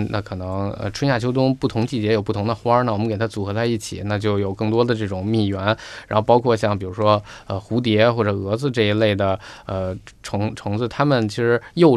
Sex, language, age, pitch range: male, Chinese, 20-39, 100-120 Hz